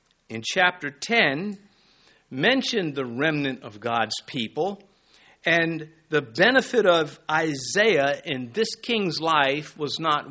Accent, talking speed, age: American, 115 wpm, 50-69